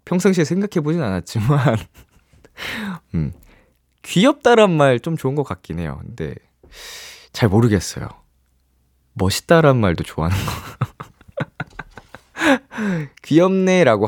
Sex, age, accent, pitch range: male, 20-39, native, 100-160 Hz